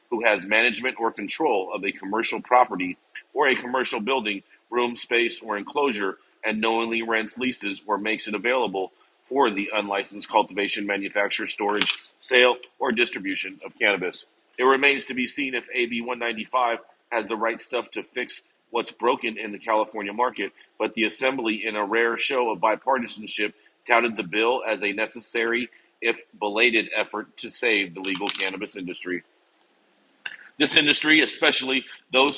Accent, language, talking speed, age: American, English, 155 wpm, 40-59